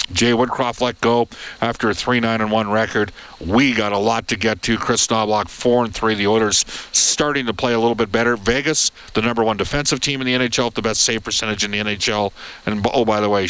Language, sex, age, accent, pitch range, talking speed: English, male, 50-69, American, 105-130 Hz, 220 wpm